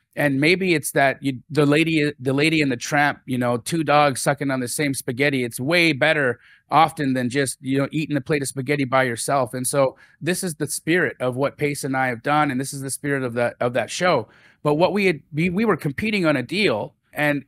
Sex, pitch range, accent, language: male, 140-165 Hz, American, English